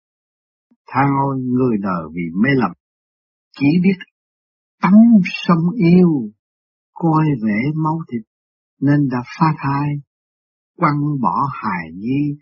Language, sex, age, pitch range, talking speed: Vietnamese, male, 60-79, 130-180 Hz, 110 wpm